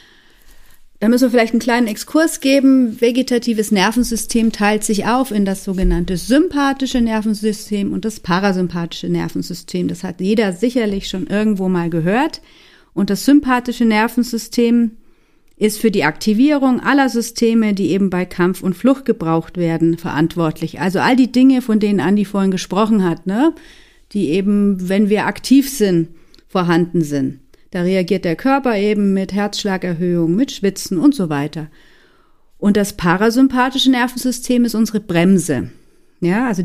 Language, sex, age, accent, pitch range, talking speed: German, female, 40-59, German, 185-240 Hz, 145 wpm